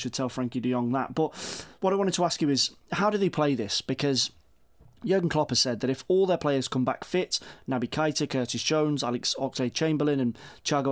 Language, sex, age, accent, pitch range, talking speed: English, male, 30-49, British, 125-150 Hz, 225 wpm